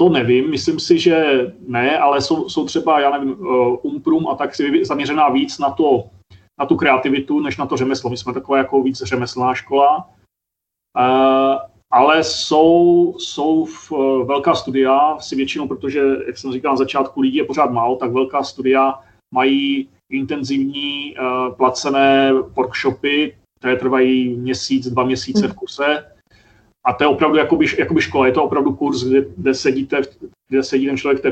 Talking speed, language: 165 wpm, Czech